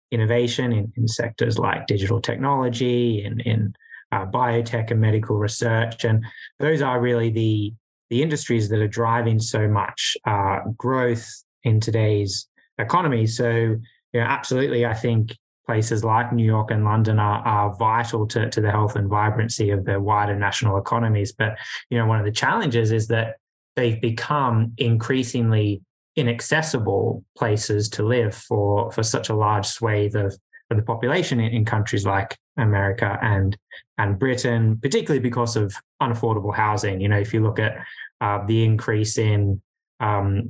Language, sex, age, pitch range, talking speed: English, male, 20-39, 105-120 Hz, 160 wpm